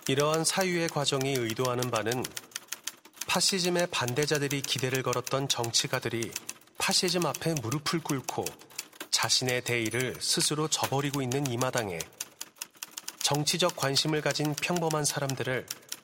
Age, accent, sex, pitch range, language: 30-49, native, male, 130-160 Hz, Korean